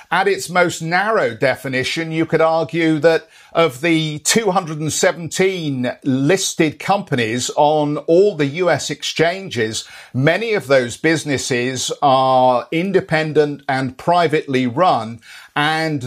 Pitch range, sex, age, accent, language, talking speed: 135-165 Hz, male, 50-69, British, English, 110 wpm